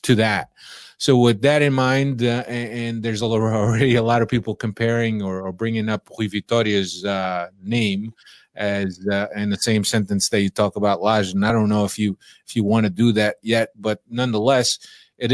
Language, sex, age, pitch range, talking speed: English, male, 30-49, 105-120 Hz, 205 wpm